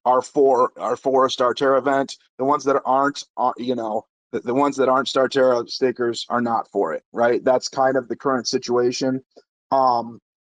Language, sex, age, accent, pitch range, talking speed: English, male, 30-49, American, 125-150 Hz, 200 wpm